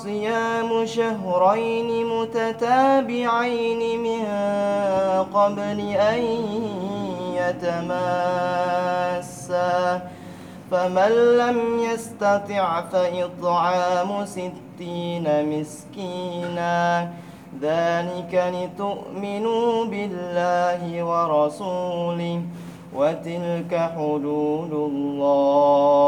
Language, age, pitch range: Indonesian, 20-39, 170-225 Hz